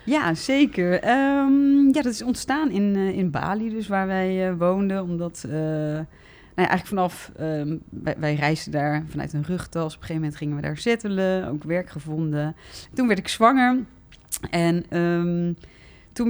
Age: 30-49